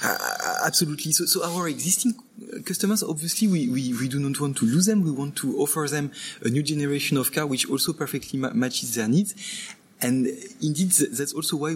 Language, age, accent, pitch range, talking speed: English, 20-39, French, 120-200 Hz, 195 wpm